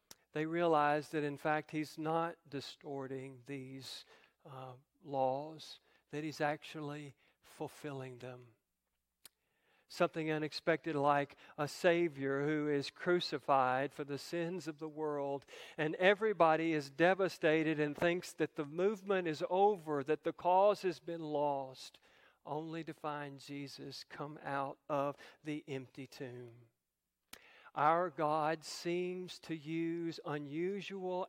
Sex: male